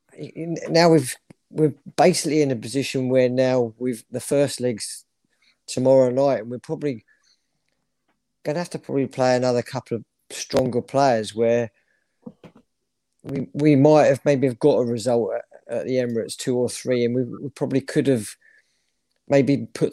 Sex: male